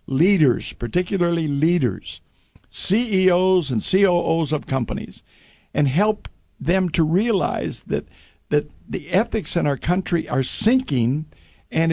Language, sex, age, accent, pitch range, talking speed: English, male, 50-69, American, 130-175 Hz, 115 wpm